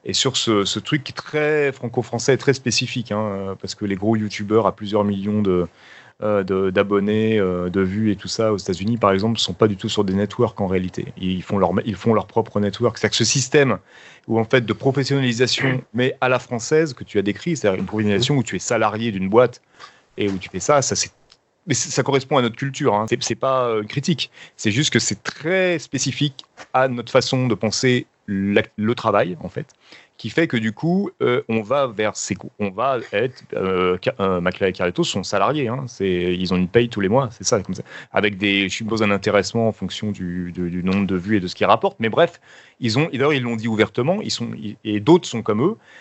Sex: male